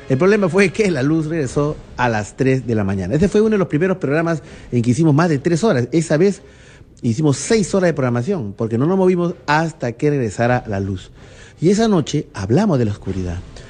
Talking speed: 220 wpm